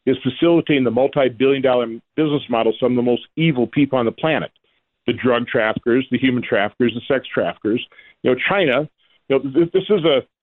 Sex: male